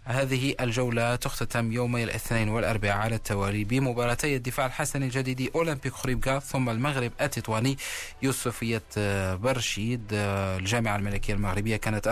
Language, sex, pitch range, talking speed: Arabic, male, 105-130 Hz, 115 wpm